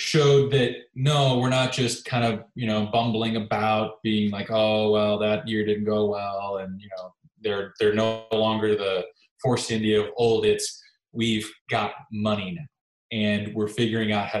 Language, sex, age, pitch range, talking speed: English, male, 20-39, 105-140 Hz, 180 wpm